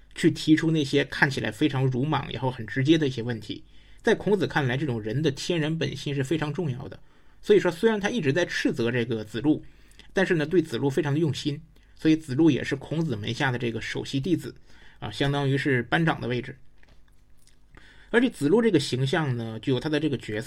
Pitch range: 125-160 Hz